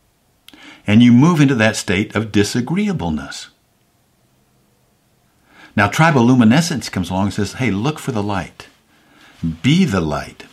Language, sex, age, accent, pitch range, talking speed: English, male, 60-79, American, 95-125 Hz, 130 wpm